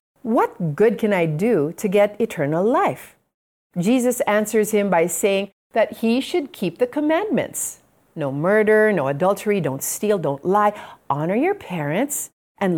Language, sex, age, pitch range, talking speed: Filipino, female, 40-59, 165-235 Hz, 150 wpm